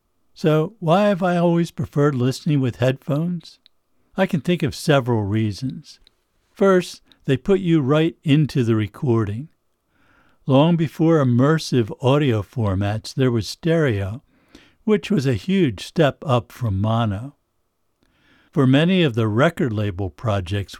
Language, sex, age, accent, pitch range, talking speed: English, male, 60-79, American, 115-160 Hz, 135 wpm